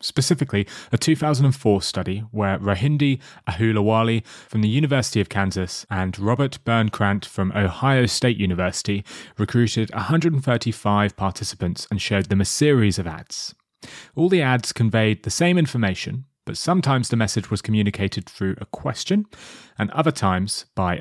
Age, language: 30-49, English